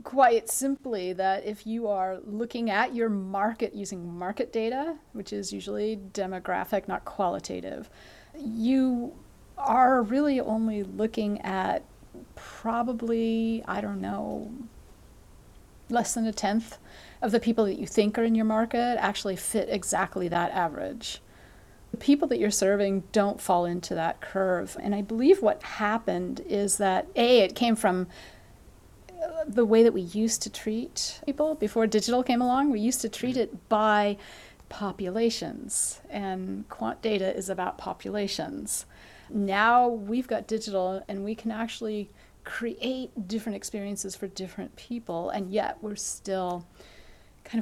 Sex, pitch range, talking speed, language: female, 195-235 Hz, 140 wpm, English